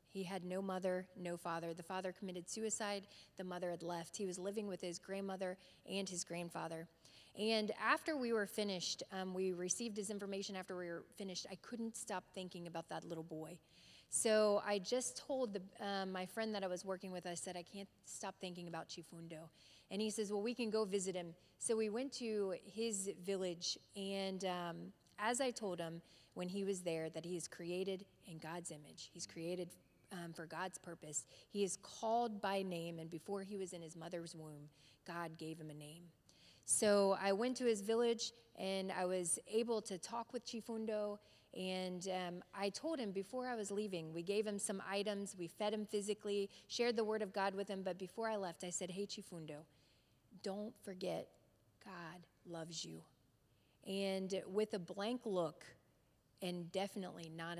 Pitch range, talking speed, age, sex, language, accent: 170-205 Hz, 190 wpm, 30-49, female, English, American